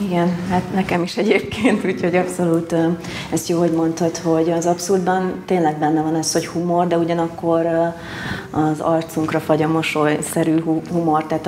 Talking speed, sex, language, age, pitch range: 155 wpm, female, Hungarian, 30-49, 155-175 Hz